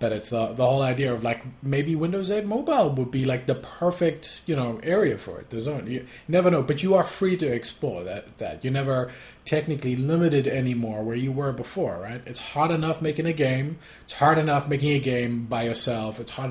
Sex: male